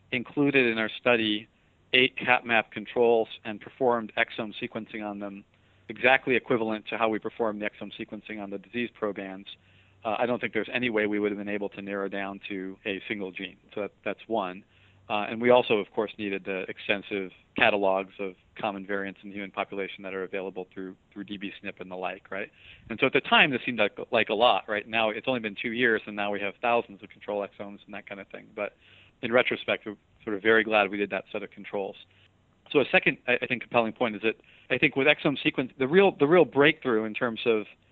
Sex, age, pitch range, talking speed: male, 40-59, 100-120 Hz, 225 wpm